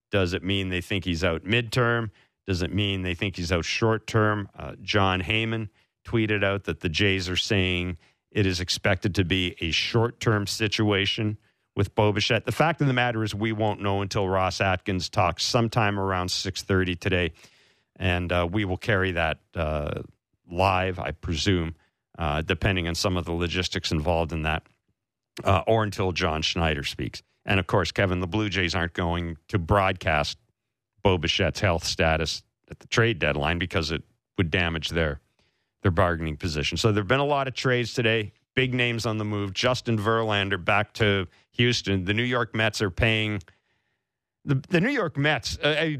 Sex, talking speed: male, 175 wpm